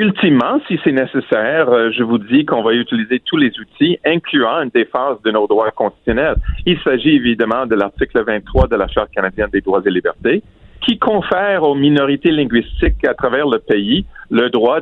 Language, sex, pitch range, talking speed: French, male, 115-185 Hz, 180 wpm